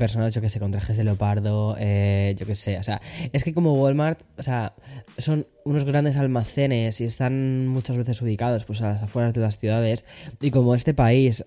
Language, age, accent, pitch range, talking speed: Spanish, 10-29, Spanish, 105-130 Hz, 205 wpm